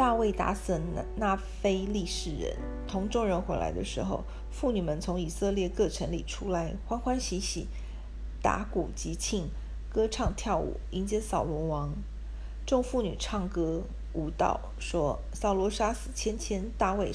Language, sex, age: Chinese, female, 50-69